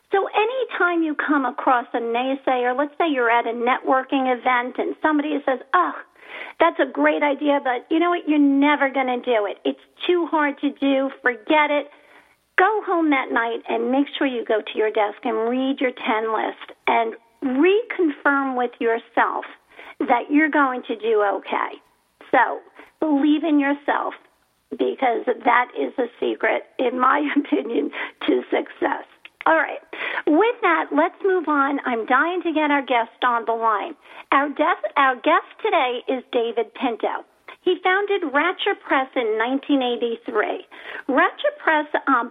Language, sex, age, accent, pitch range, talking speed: English, female, 50-69, American, 245-340 Hz, 160 wpm